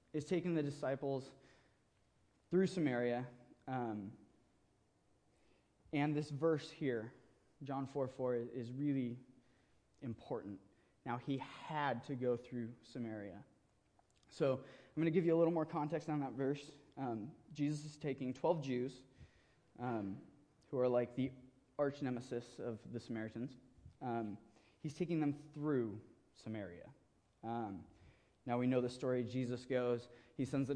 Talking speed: 135 wpm